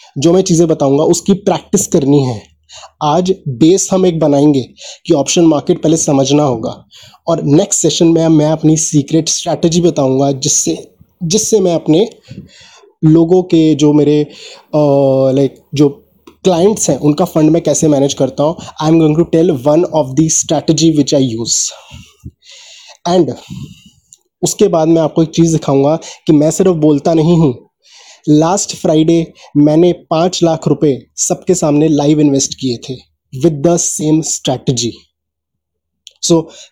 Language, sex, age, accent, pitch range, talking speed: Hindi, male, 20-39, native, 150-180 Hz, 145 wpm